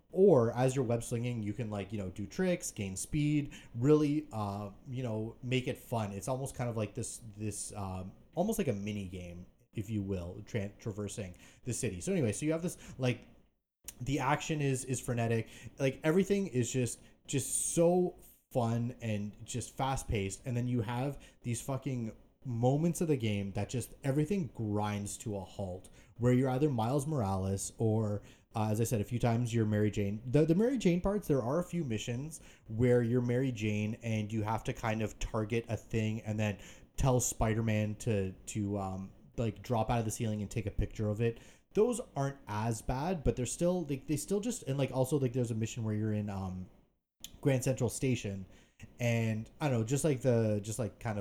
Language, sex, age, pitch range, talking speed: English, male, 30-49, 105-135 Hz, 200 wpm